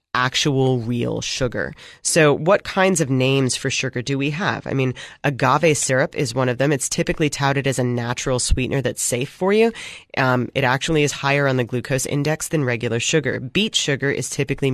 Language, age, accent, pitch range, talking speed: English, 30-49, American, 125-155 Hz, 195 wpm